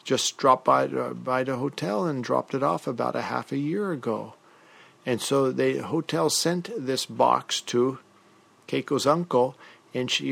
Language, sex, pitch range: English, male, 120-150 Hz